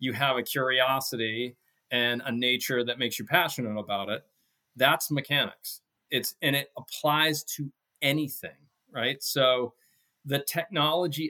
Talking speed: 135 wpm